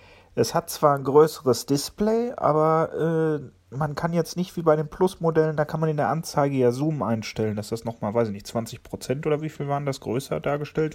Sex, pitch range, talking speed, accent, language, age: male, 110-145 Hz, 215 wpm, German, German, 40-59